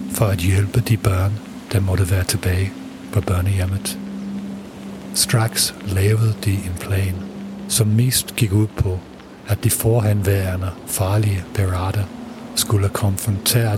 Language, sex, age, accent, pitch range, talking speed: English, male, 50-69, German, 100-115 Hz, 120 wpm